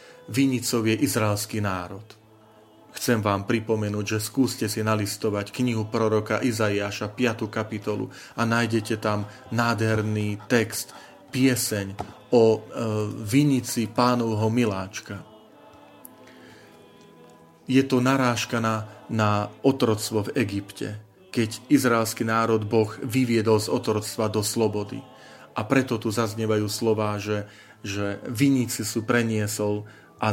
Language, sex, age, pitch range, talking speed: Slovak, male, 30-49, 105-120 Hz, 105 wpm